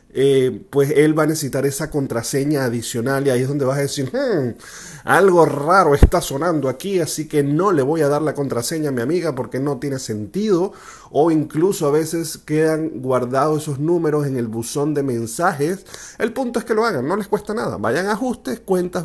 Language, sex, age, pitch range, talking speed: Spanish, male, 30-49, 125-170 Hz, 200 wpm